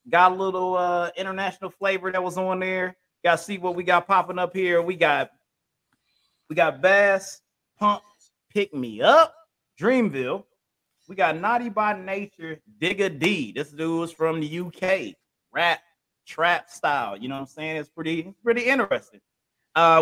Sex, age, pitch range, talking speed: male, 30-49, 155-195 Hz, 165 wpm